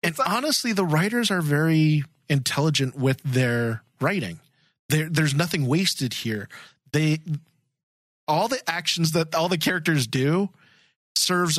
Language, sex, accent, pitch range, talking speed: English, male, American, 130-165 Hz, 130 wpm